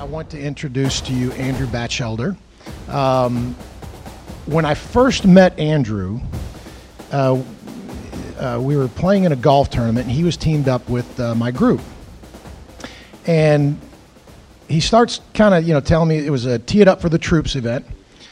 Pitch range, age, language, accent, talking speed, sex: 120-170 Hz, 50-69, English, American, 165 wpm, male